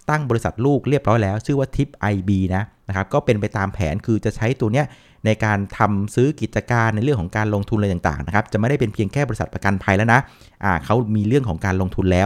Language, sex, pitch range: Thai, male, 100-130 Hz